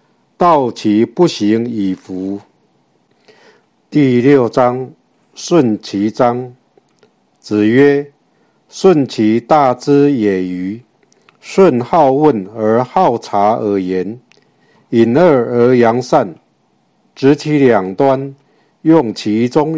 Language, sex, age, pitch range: Chinese, male, 60-79, 115-150 Hz